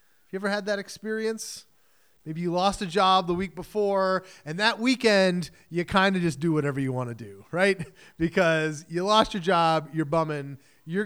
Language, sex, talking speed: English, male, 185 wpm